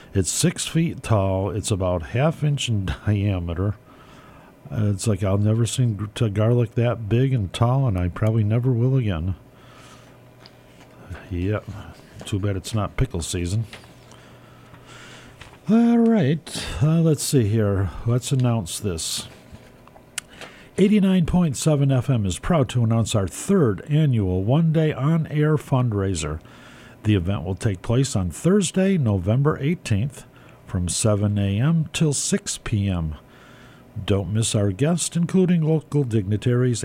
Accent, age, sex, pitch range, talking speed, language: American, 50-69, male, 100-140 Hz, 125 wpm, English